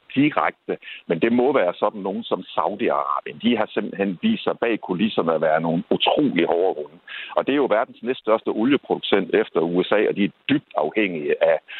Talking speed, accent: 195 wpm, native